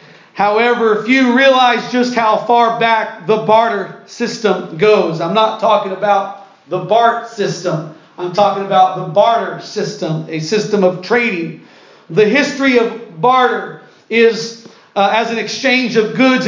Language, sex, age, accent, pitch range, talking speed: English, male, 40-59, American, 215-250 Hz, 145 wpm